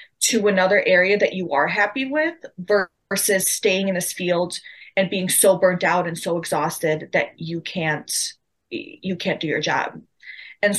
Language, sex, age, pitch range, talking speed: English, female, 20-39, 175-210 Hz, 165 wpm